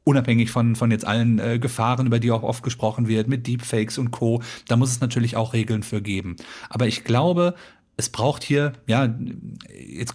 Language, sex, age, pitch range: German, male, 40-59, 115-145 Hz